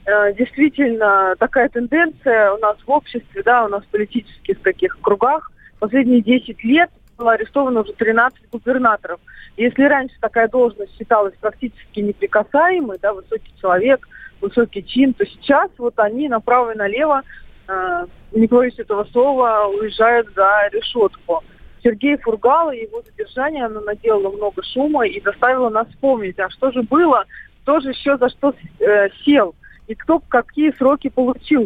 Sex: female